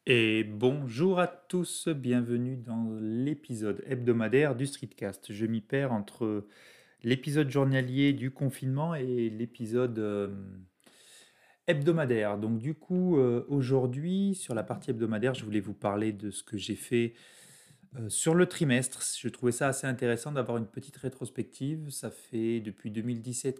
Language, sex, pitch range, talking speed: French, male, 105-135 Hz, 140 wpm